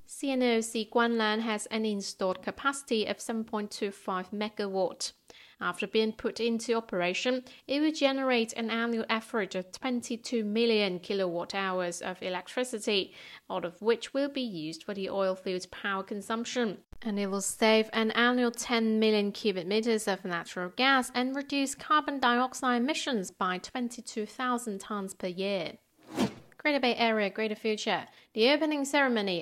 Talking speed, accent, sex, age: 145 wpm, British, female, 30-49